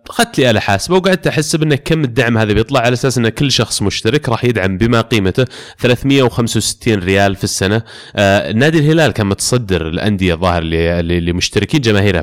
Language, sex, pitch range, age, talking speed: Arabic, male, 95-120 Hz, 20-39, 175 wpm